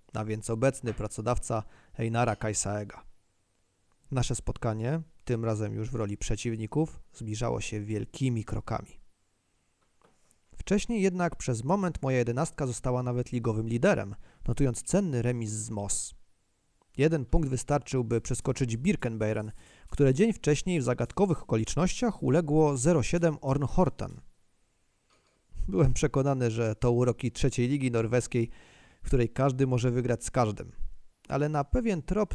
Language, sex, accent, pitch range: Polish, male, native, 110-150 Hz